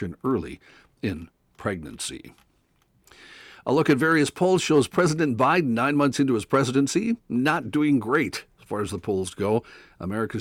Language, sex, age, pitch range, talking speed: English, male, 60-79, 100-125 Hz, 150 wpm